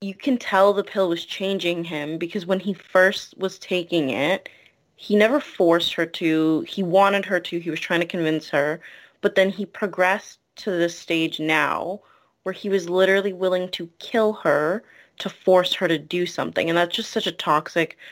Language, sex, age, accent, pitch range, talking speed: English, female, 20-39, American, 160-195 Hz, 190 wpm